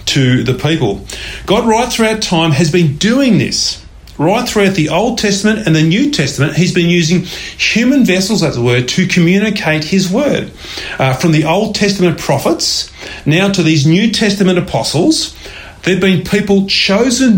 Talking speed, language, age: 170 wpm, English, 30-49